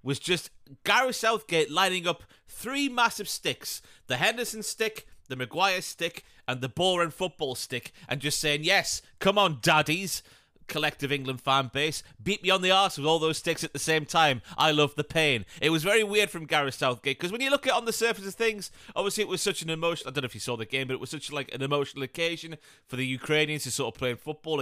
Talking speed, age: 230 wpm, 30-49